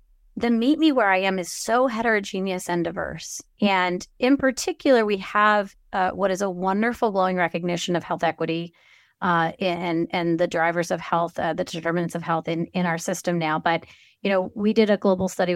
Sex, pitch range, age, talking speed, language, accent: female, 175-215 Hz, 30-49, 195 wpm, English, American